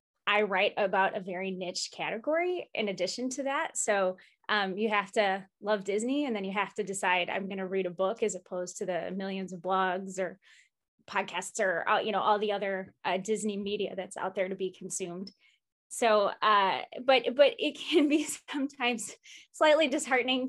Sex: female